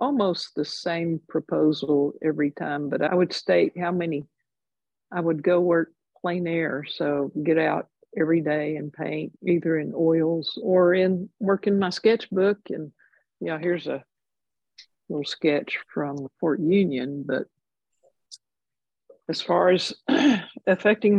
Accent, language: American, English